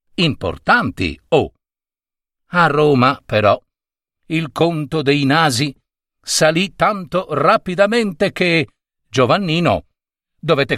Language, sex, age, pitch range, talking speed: Italian, male, 50-69, 135-185 Hz, 85 wpm